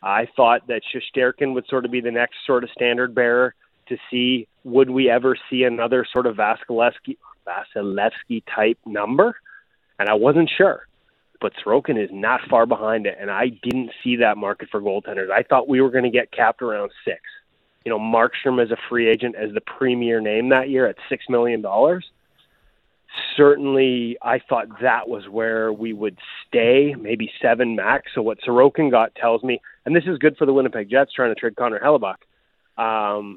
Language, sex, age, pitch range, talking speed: English, male, 30-49, 115-135 Hz, 190 wpm